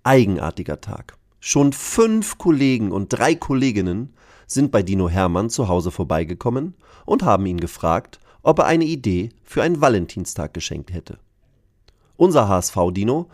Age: 40-59